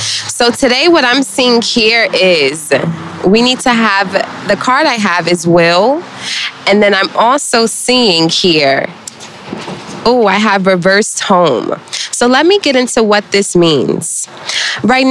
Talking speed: 145 wpm